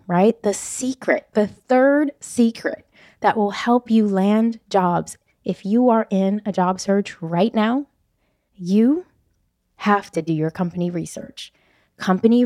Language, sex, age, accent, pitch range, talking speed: English, female, 20-39, American, 185-245 Hz, 140 wpm